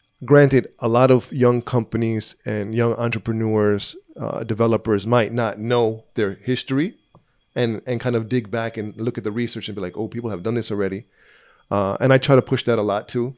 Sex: male